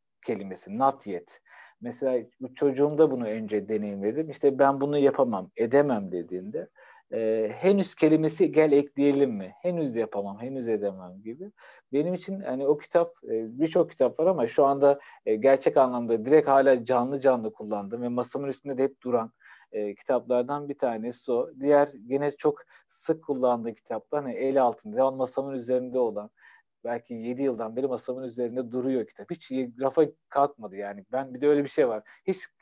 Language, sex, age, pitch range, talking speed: Turkish, male, 50-69, 125-155 Hz, 160 wpm